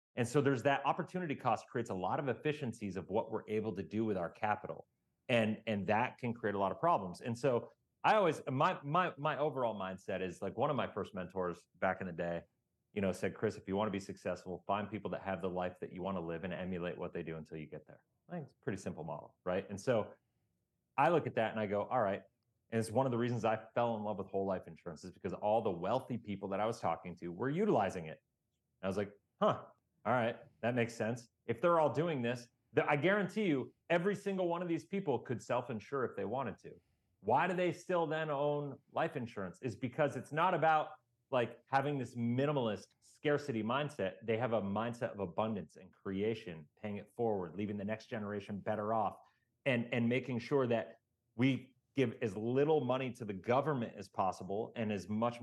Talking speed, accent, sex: 225 wpm, American, male